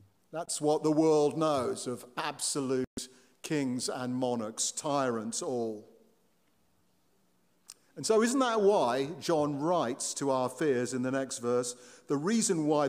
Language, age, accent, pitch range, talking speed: English, 50-69, British, 130-160 Hz, 135 wpm